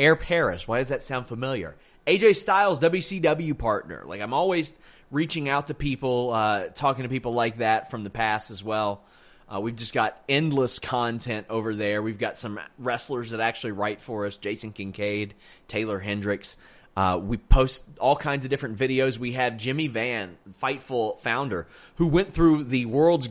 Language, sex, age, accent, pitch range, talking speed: English, male, 30-49, American, 100-140 Hz, 180 wpm